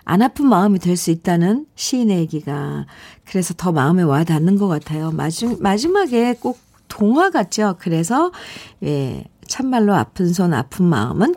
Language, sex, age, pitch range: Korean, female, 50-69, 165-240 Hz